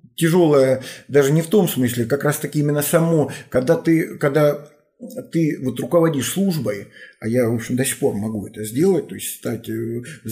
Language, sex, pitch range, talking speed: Russian, male, 120-140 Hz, 180 wpm